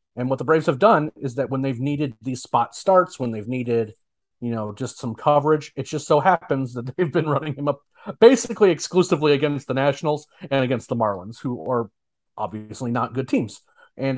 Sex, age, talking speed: male, 30-49, 205 wpm